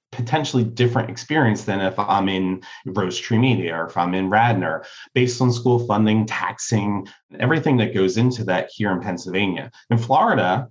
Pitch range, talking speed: 95-130 Hz, 170 wpm